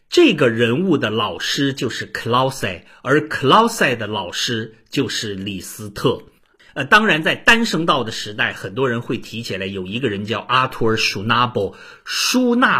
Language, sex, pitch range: Chinese, male, 105-140 Hz